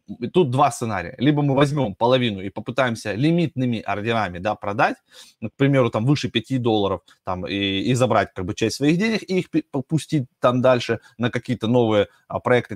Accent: native